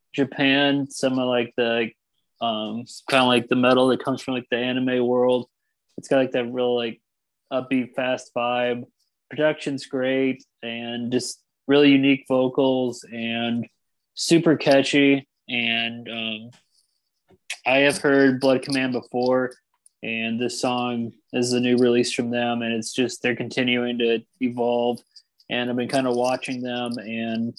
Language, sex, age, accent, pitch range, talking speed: English, male, 20-39, American, 115-130 Hz, 150 wpm